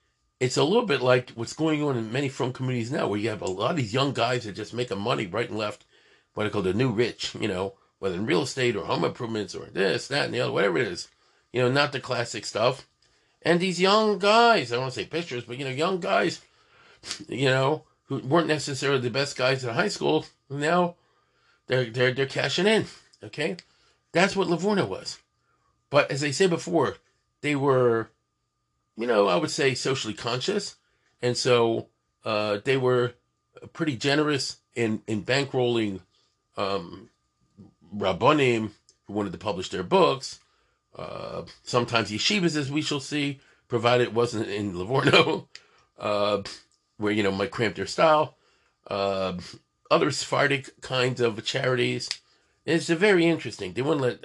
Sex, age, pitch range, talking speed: male, 50-69, 115-150 Hz, 180 wpm